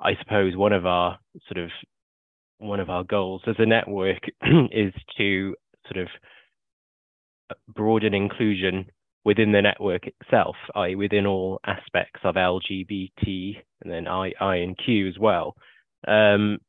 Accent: British